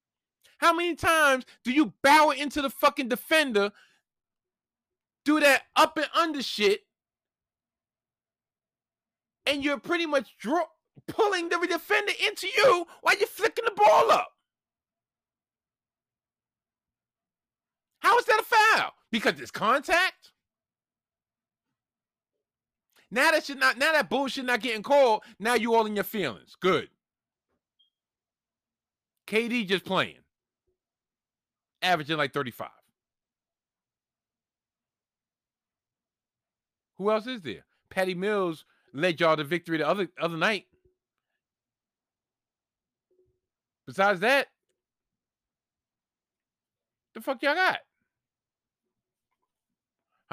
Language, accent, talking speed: English, American, 95 wpm